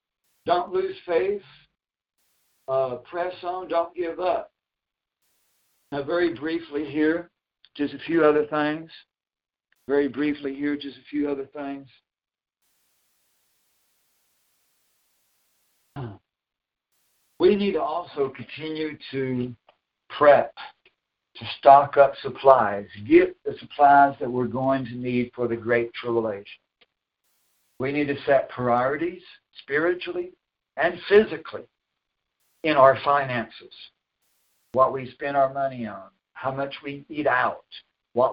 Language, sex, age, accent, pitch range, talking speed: English, male, 60-79, American, 130-170 Hz, 115 wpm